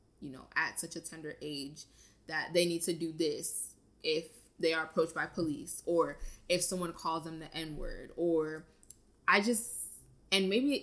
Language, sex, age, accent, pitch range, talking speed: English, female, 20-39, American, 155-175 Hz, 170 wpm